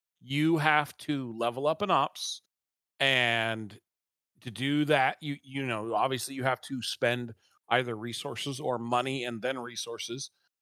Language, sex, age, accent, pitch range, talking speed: English, male, 40-59, American, 120-160 Hz, 145 wpm